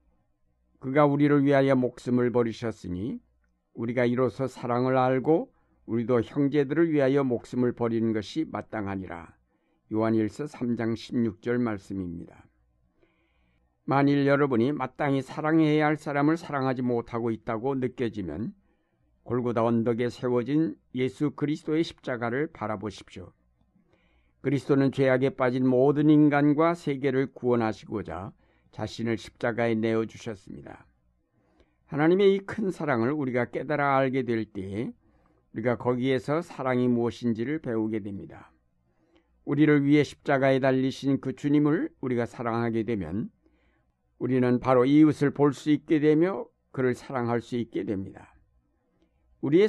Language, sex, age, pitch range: Korean, male, 60-79, 115-140 Hz